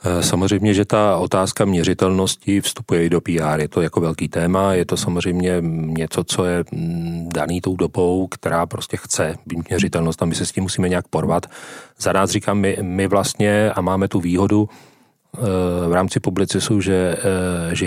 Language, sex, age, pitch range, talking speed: Czech, male, 40-59, 85-100 Hz, 170 wpm